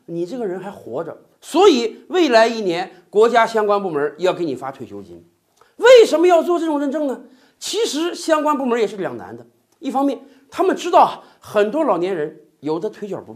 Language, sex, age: Chinese, male, 50-69